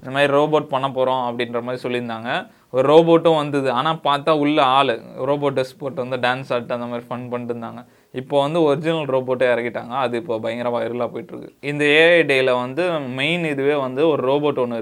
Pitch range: 120-145 Hz